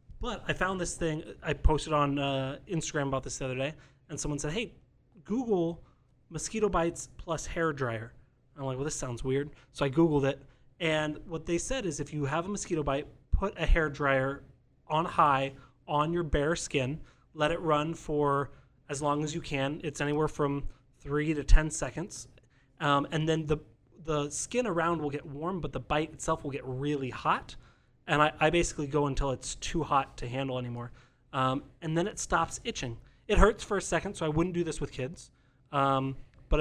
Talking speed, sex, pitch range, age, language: 200 wpm, male, 135-160 Hz, 30-49, English